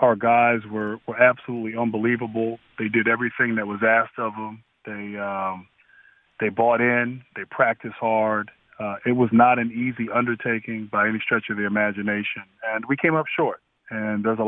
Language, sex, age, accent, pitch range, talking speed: English, male, 30-49, American, 110-135 Hz, 175 wpm